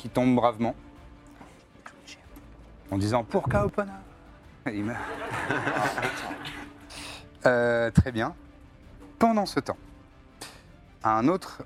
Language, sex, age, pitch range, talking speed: French, male, 30-49, 105-130 Hz, 95 wpm